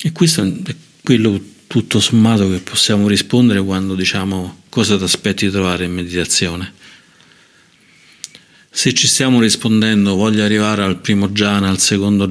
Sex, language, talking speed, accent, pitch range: male, Italian, 140 wpm, native, 95-105 Hz